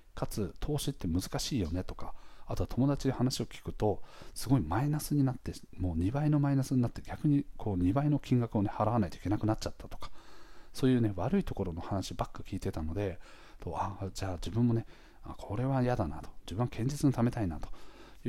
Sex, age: male, 40-59